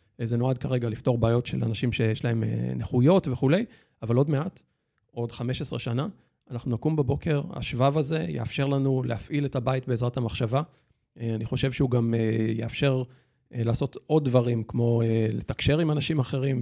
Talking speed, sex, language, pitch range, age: 150 wpm, male, Hebrew, 120-145 Hz, 40-59